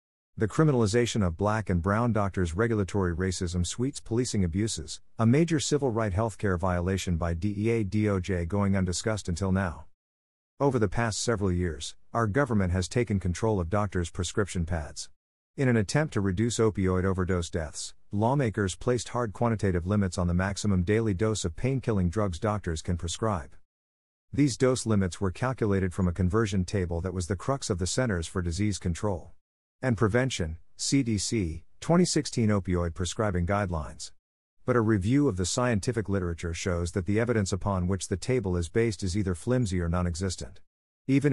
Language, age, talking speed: English, 50-69, 160 wpm